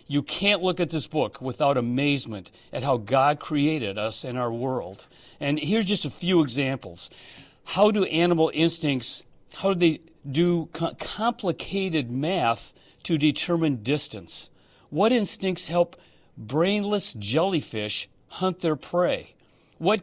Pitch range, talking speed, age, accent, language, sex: 140-180 Hz, 130 wpm, 40-59, American, English, male